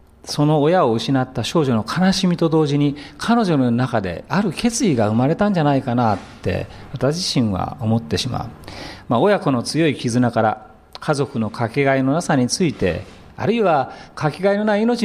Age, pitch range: 40-59, 105-170 Hz